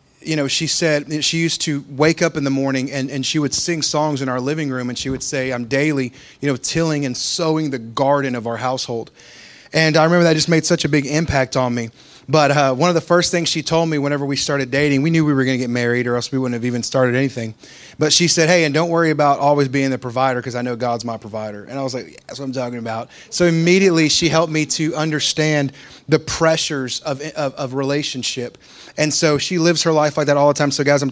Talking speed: 260 wpm